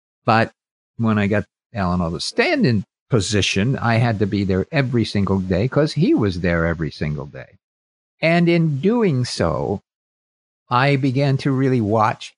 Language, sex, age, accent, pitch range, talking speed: English, male, 50-69, American, 105-135 Hz, 160 wpm